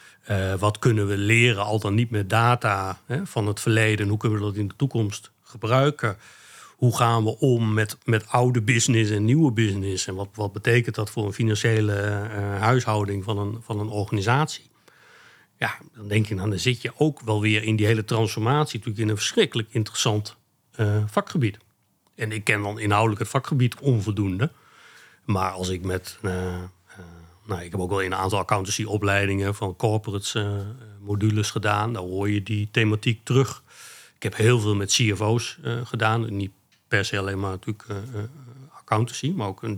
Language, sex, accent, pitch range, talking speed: Dutch, male, Dutch, 100-115 Hz, 180 wpm